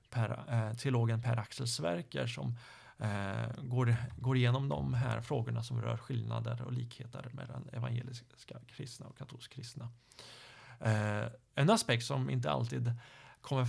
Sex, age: male, 30-49